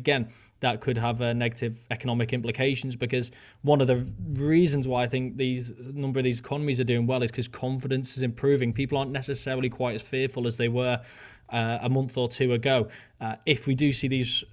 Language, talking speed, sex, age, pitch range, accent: English, 205 wpm, male, 20-39, 120-130 Hz, British